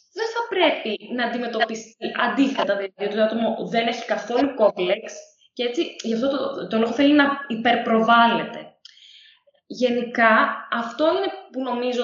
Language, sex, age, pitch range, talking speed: Greek, female, 20-39, 195-295 Hz, 145 wpm